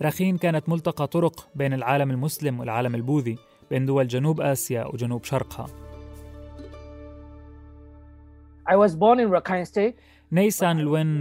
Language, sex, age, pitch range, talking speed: Arabic, male, 20-39, 125-160 Hz, 90 wpm